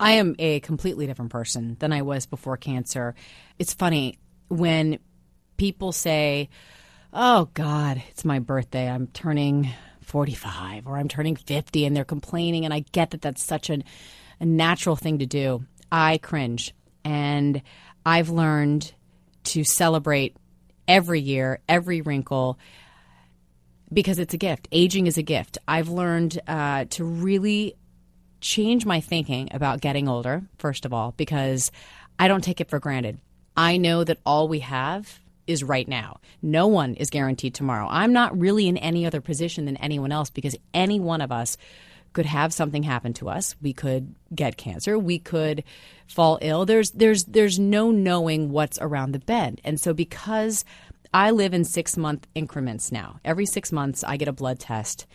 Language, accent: English, American